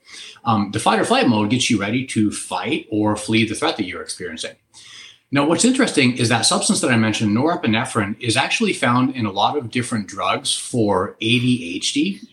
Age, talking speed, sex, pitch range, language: 30-49, 190 wpm, male, 110-150 Hz, English